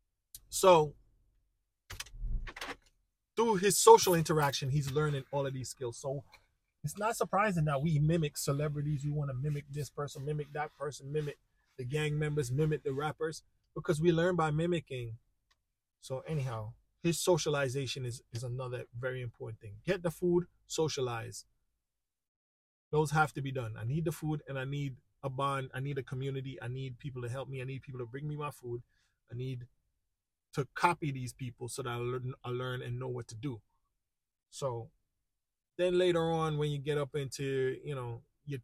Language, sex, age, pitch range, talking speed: English, male, 20-39, 120-150 Hz, 180 wpm